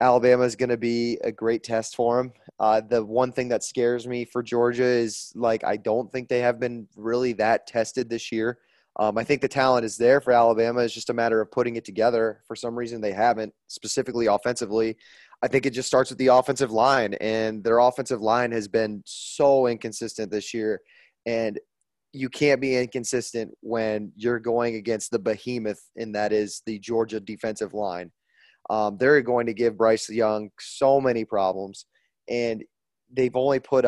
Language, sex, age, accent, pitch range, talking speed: English, male, 20-39, American, 110-125 Hz, 190 wpm